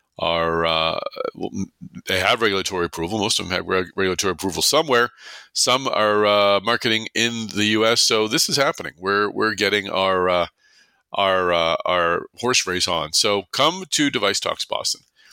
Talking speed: 160 wpm